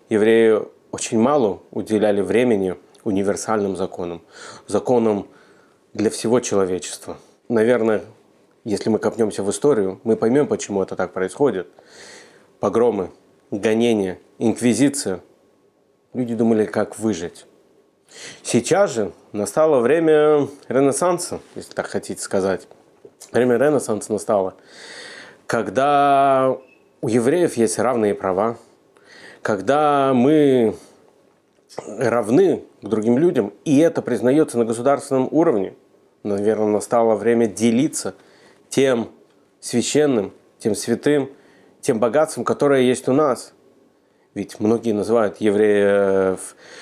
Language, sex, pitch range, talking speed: Russian, male, 100-140 Hz, 100 wpm